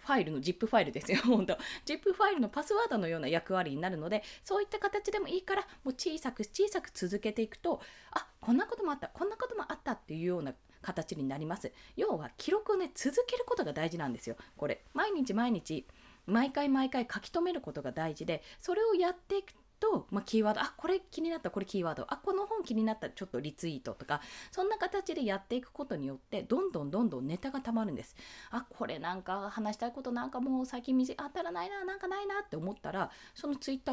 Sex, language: female, Japanese